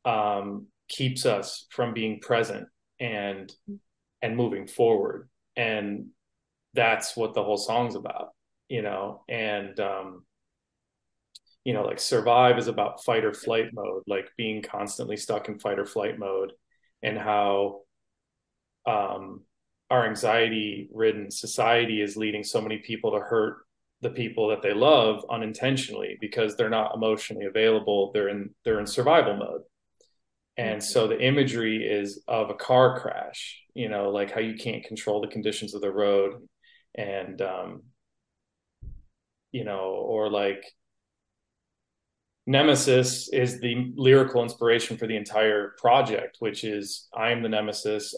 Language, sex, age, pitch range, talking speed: English, male, 30-49, 100-120 Hz, 140 wpm